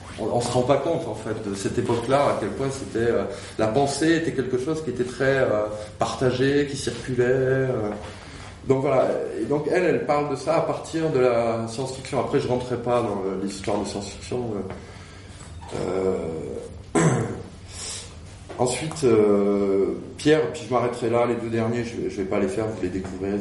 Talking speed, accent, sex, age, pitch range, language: 175 wpm, French, male, 20-39, 100-135 Hz, French